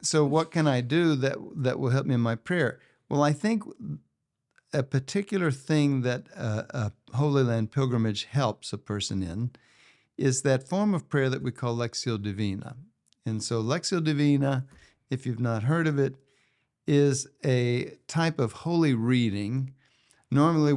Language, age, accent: English, 60-79, American